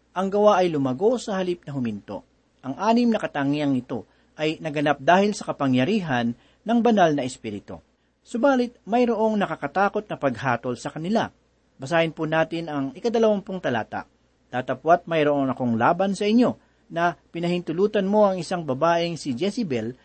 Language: Filipino